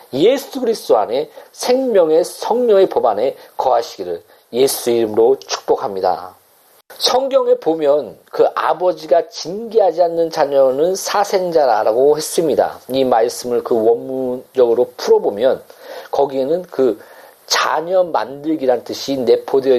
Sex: male